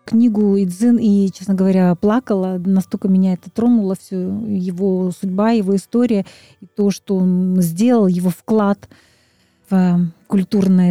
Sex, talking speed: female, 130 wpm